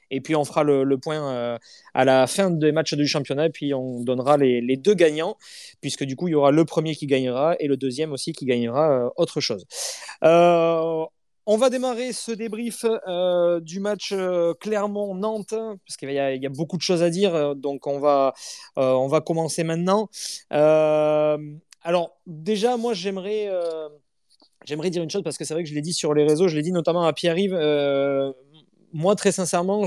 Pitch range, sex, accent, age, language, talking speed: 140-180 Hz, male, French, 20-39, French, 210 wpm